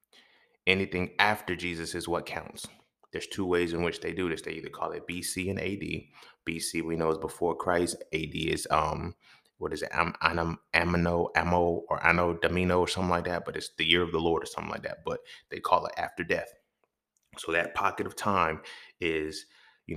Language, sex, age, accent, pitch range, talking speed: English, male, 20-39, American, 85-105 Hz, 200 wpm